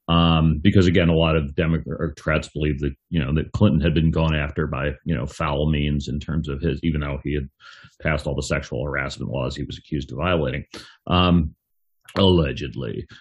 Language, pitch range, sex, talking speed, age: English, 75-95 Hz, male, 195 wpm, 40-59